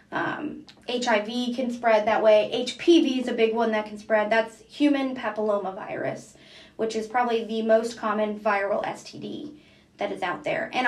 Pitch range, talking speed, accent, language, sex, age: 220-270 Hz, 165 wpm, American, English, female, 20-39